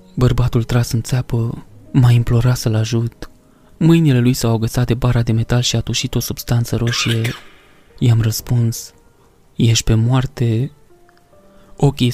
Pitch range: 115-130 Hz